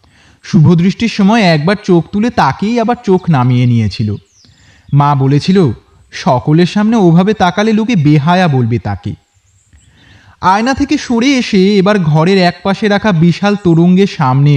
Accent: native